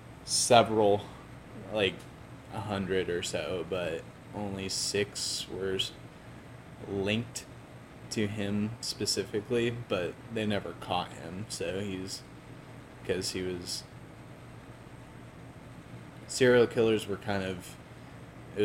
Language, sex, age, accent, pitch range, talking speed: English, male, 20-39, American, 95-125 Hz, 95 wpm